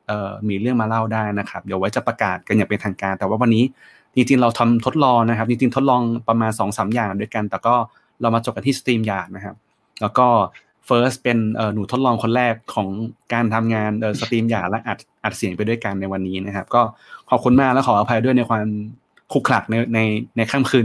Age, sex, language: 20-39, male, Thai